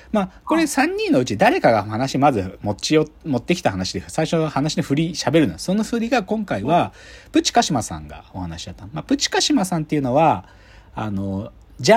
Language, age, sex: Japanese, 40-59, male